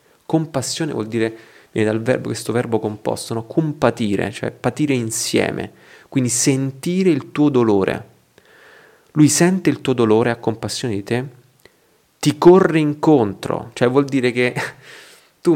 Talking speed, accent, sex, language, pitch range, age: 140 wpm, native, male, Italian, 115-150 Hz, 30-49